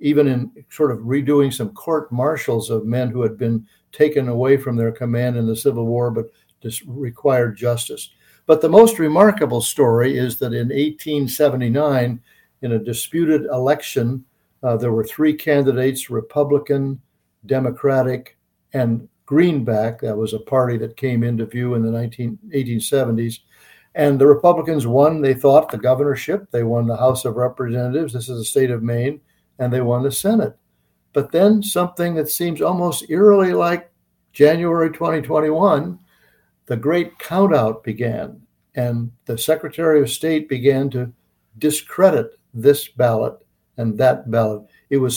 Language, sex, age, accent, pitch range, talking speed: English, male, 60-79, American, 120-155 Hz, 155 wpm